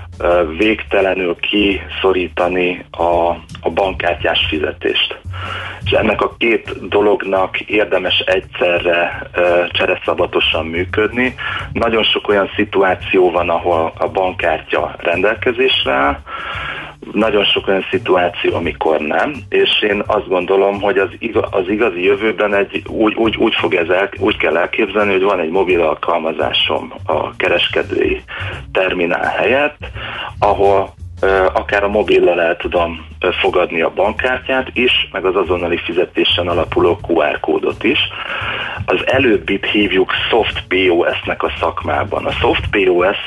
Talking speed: 120 wpm